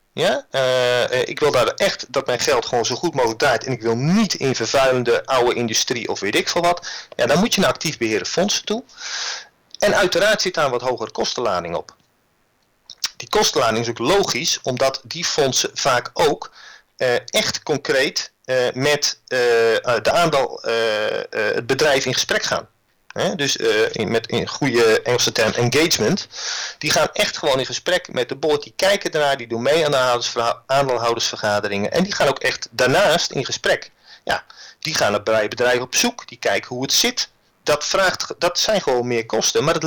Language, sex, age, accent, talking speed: Dutch, male, 40-59, Dutch, 195 wpm